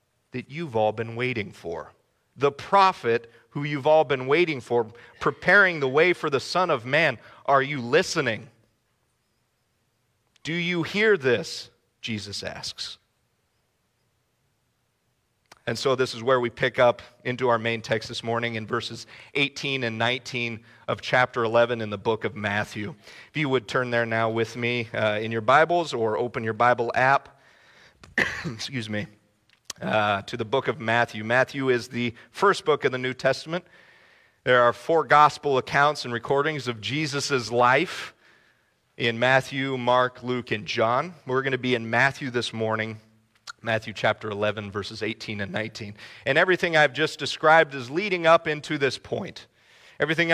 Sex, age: male, 40-59